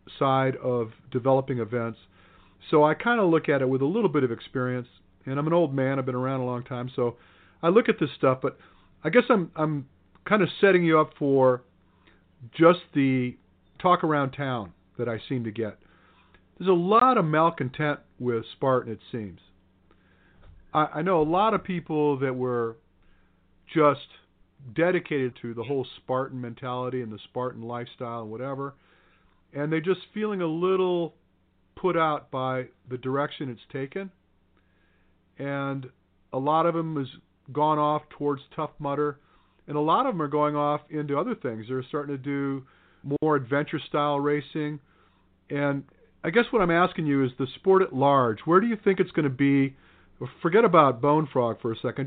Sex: male